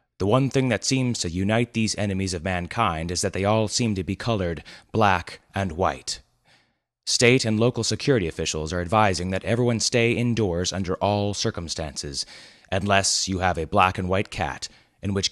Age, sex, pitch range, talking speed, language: 30-49, male, 85-105 Hz, 180 wpm, English